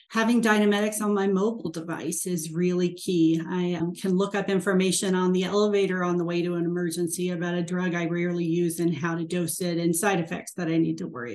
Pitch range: 170-205 Hz